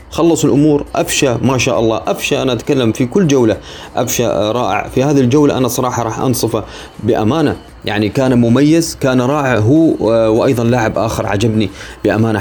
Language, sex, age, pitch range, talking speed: Arabic, male, 30-49, 105-140 Hz, 160 wpm